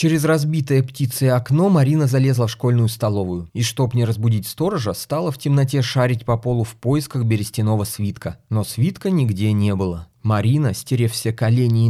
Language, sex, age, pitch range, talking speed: Russian, male, 20-39, 100-130 Hz, 170 wpm